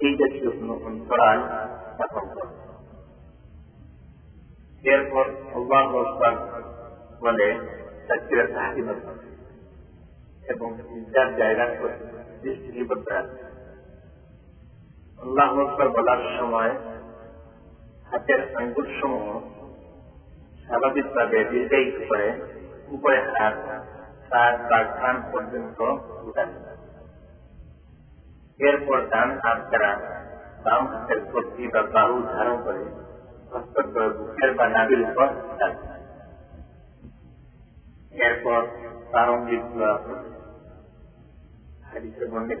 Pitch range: 80-120 Hz